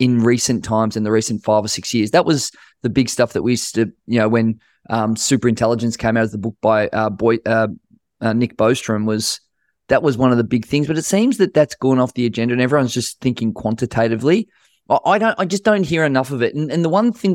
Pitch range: 110-130 Hz